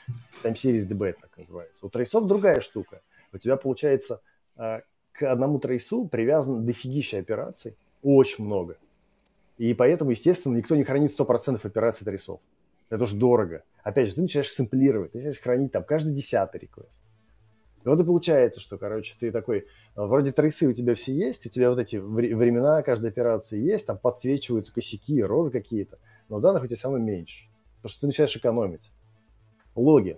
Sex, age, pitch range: male, 20-39, 110-135 Hz